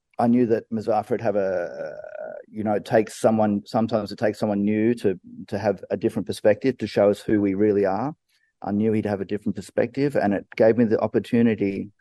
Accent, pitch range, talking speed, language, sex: Australian, 100-120 Hz, 215 wpm, English, male